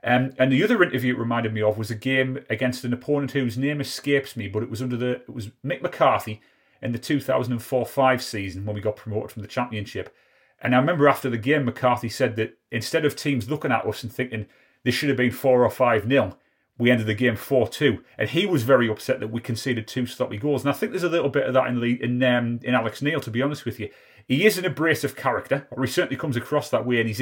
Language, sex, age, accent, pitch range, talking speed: English, male, 30-49, British, 115-135 Hz, 265 wpm